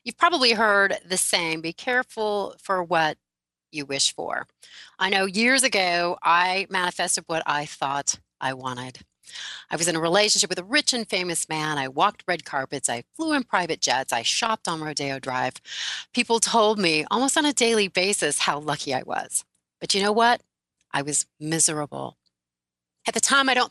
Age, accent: 30-49, American